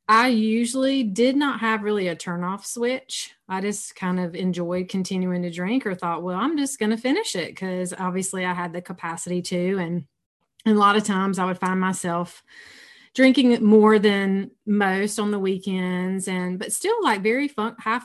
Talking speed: 185 wpm